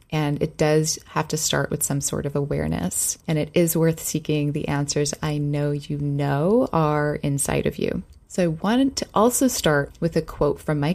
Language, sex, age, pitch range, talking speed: English, female, 20-39, 150-190 Hz, 205 wpm